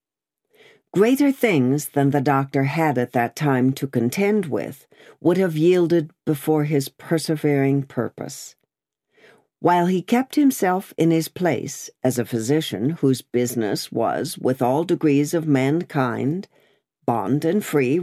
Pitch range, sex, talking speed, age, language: 135-185 Hz, female, 135 wpm, 60-79, English